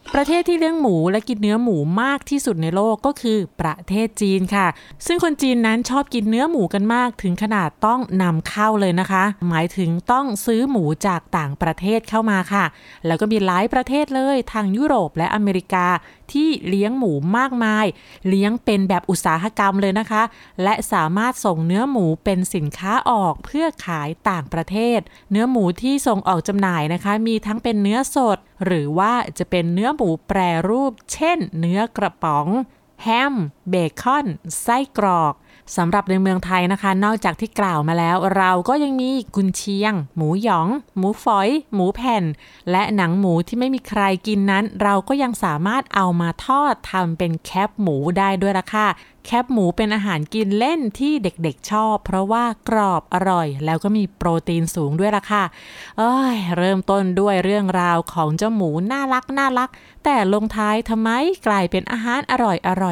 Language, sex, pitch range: Thai, female, 180-230 Hz